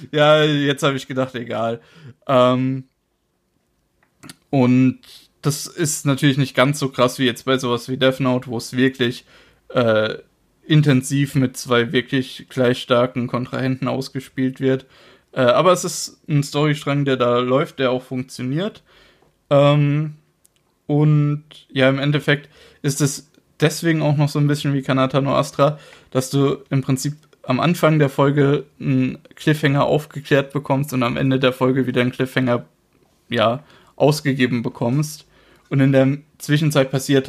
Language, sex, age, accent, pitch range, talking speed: German, male, 20-39, German, 125-145 Hz, 145 wpm